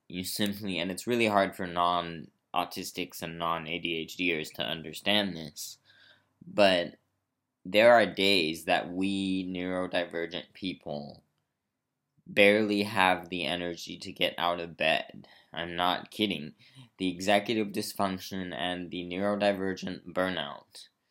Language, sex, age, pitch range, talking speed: English, male, 20-39, 90-105 Hz, 115 wpm